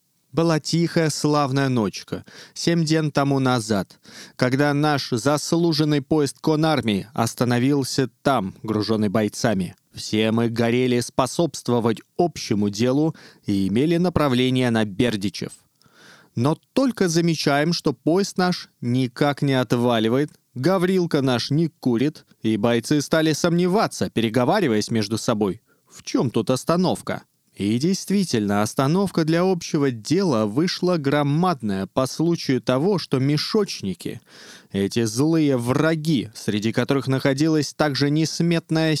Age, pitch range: 20-39, 120-160 Hz